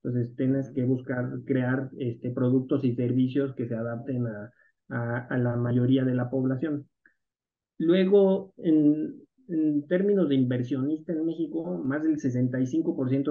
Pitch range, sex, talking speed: 125-165 Hz, male, 140 wpm